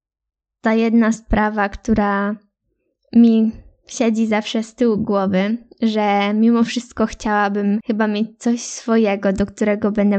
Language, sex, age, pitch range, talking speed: Polish, female, 10-29, 210-250 Hz, 125 wpm